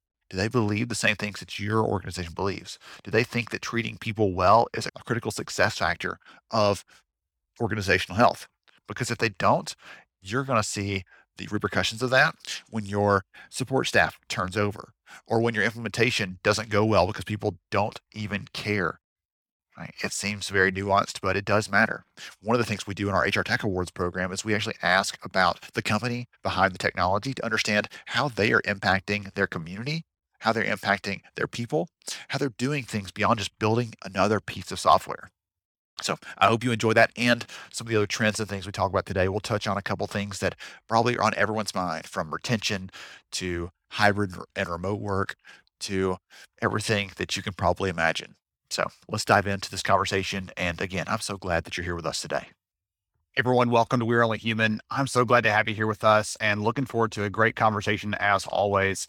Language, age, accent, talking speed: English, 40-59, American, 200 wpm